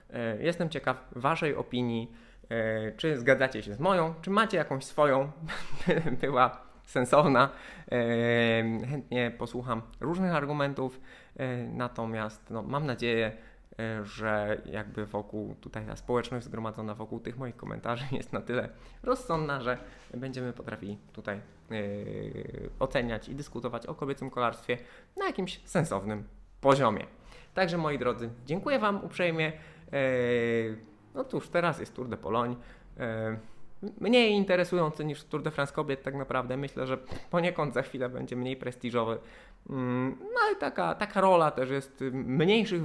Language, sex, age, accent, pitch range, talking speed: Polish, male, 20-39, native, 115-160 Hz, 125 wpm